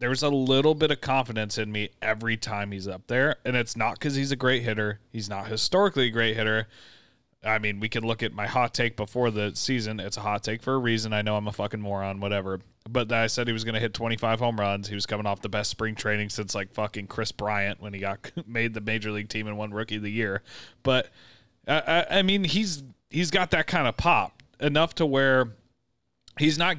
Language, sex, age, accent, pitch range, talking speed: English, male, 30-49, American, 105-135 Hz, 240 wpm